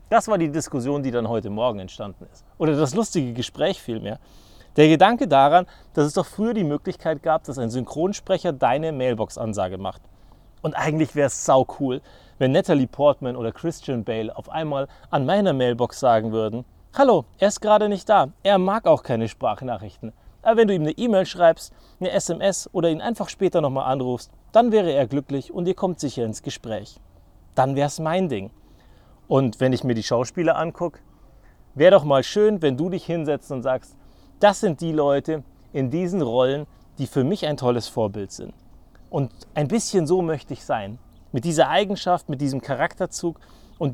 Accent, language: German, German